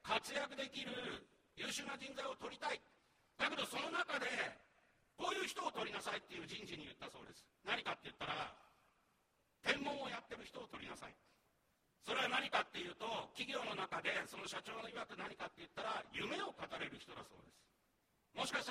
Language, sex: Japanese, male